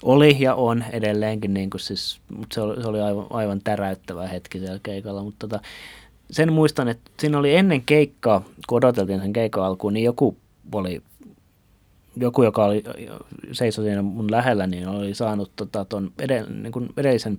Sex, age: male, 30-49